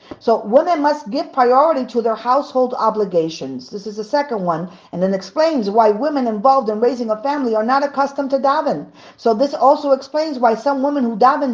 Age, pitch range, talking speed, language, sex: 40-59, 220-275 Hz, 200 wpm, English, female